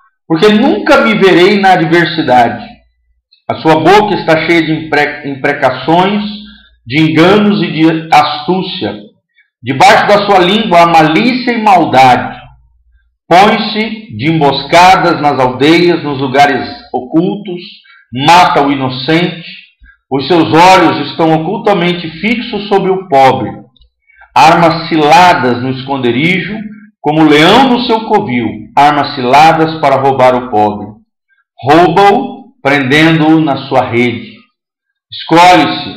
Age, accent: 50-69, Brazilian